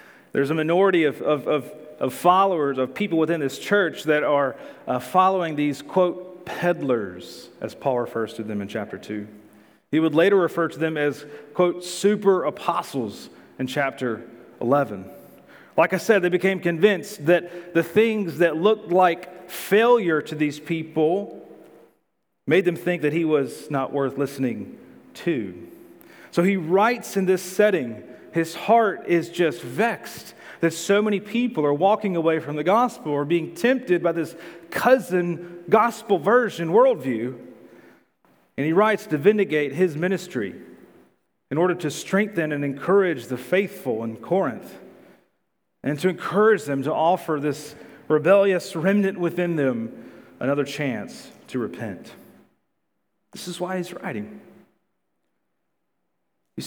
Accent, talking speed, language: American, 145 wpm, English